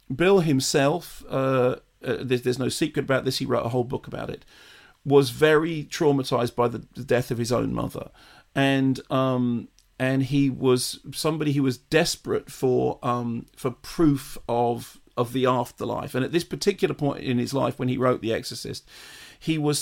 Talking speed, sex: 180 wpm, male